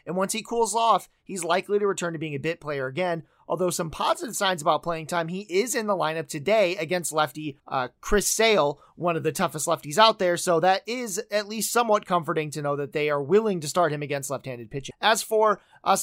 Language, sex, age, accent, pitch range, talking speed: English, male, 30-49, American, 160-195 Hz, 230 wpm